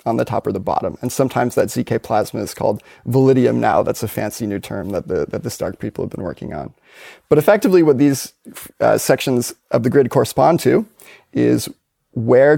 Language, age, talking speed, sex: English, 30-49, 200 wpm, male